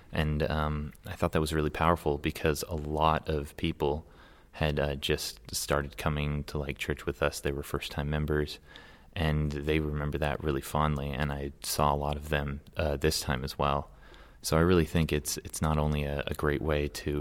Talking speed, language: 205 wpm, English